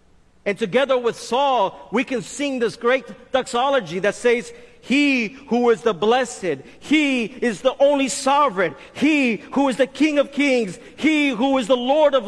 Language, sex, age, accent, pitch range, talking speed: English, male, 40-59, American, 185-260 Hz, 170 wpm